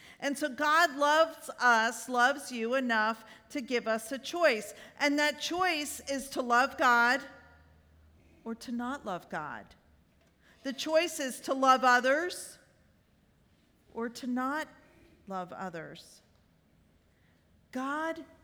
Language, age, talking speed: English, 50-69, 120 wpm